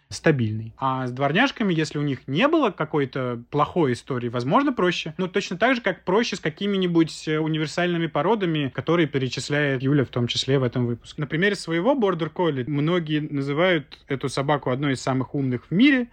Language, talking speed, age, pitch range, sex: Russian, 175 wpm, 20-39, 130-165 Hz, male